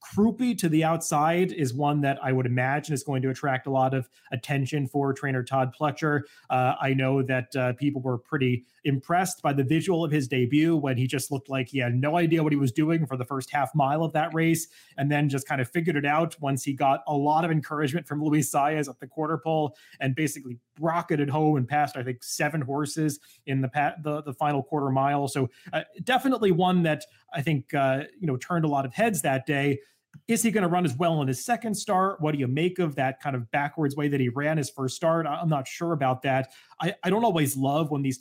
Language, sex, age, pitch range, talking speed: English, male, 30-49, 135-160 Hz, 240 wpm